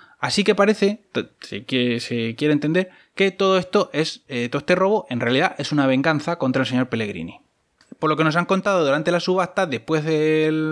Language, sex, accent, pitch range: Spanish, male, Spanish, 130-180 Hz